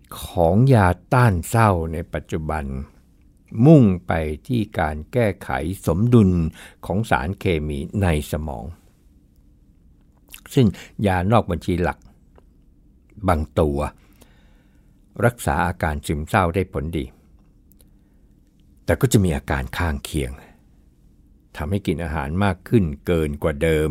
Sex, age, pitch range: male, 60-79, 75-95 Hz